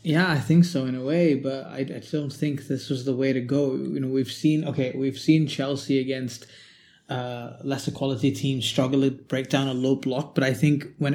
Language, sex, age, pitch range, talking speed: English, male, 20-39, 135-145 Hz, 225 wpm